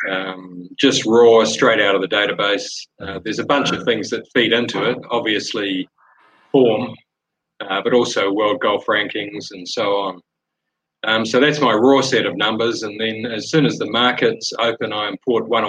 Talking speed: 185 wpm